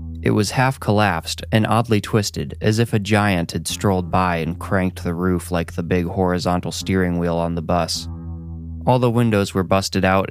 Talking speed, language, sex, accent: 185 wpm, English, male, American